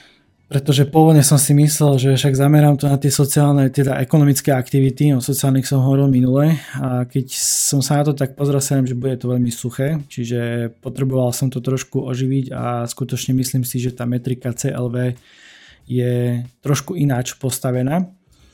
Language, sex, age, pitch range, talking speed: Slovak, male, 20-39, 125-140 Hz, 170 wpm